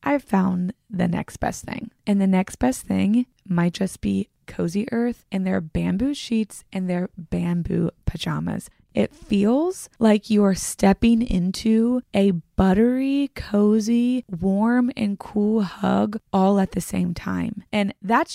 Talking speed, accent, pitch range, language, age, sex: 145 wpm, American, 190-235 Hz, English, 20-39, female